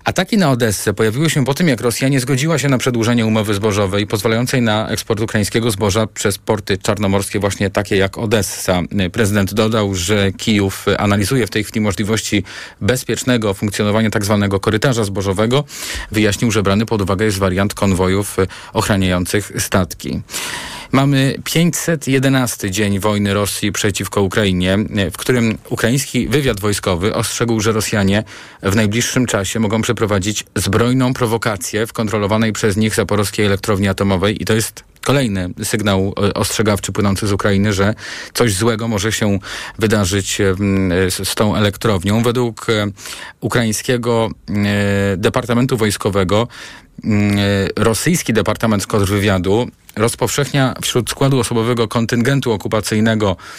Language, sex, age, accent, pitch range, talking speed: Polish, male, 40-59, native, 100-115 Hz, 125 wpm